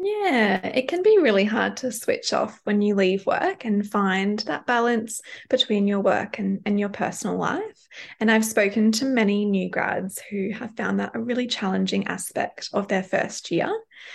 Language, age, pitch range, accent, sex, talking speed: English, 20-39, 200-245 Hz, Australian, female, 185 wpm